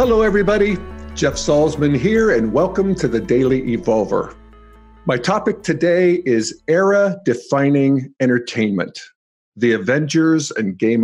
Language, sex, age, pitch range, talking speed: English, male, 50-69, 125-175 Hz, 115 wpm